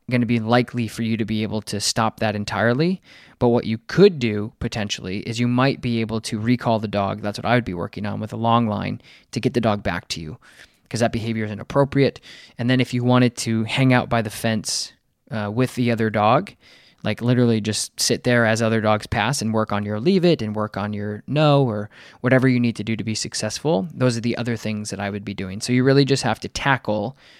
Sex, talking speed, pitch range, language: male, 245 wpm, 110-130 Hz, English